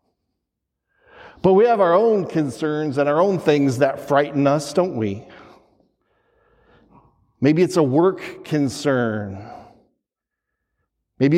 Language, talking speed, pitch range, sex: English, 110 wpm, 135-175 Hz, male